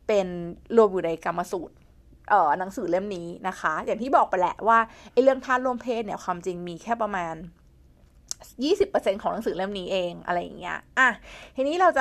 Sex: female